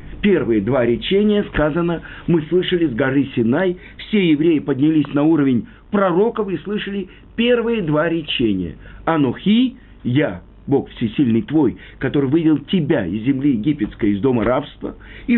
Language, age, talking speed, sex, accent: Russian, 50-69, 135 wpm, male, native